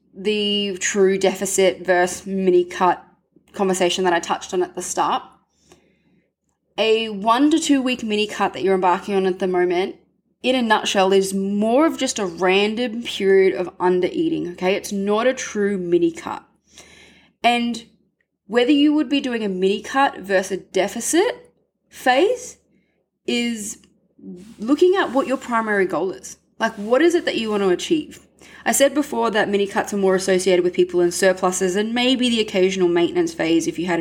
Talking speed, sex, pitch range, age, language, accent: 175 wpm, female, 185-245 Hz, 20-39, English, Australian